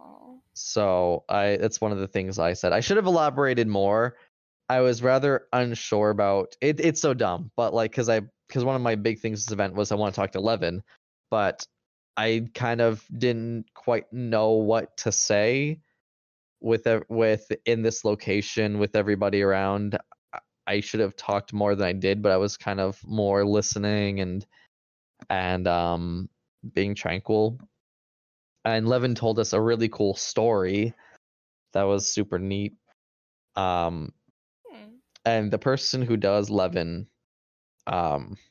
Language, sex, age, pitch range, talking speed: English, male, 20-39, 95-115 Hz, 155 wpm